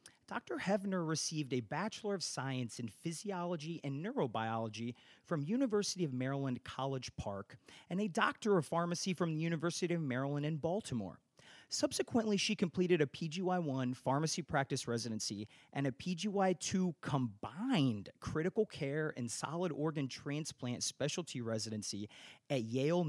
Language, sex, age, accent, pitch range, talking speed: English, male, 30-49, American, 125-175 Hz, 135 wpm